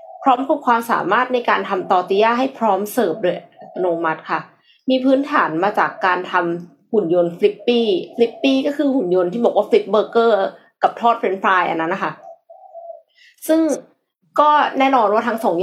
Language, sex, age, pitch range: Thai, female, 20-39, 185-250 Hz